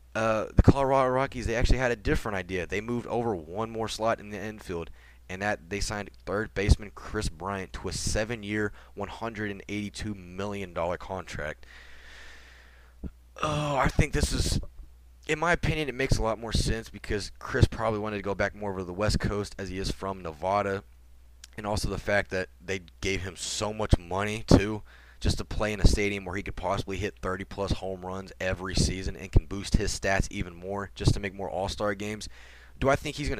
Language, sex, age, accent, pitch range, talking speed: English, male, 20-39, American, 90-105 Hz, 200 wpm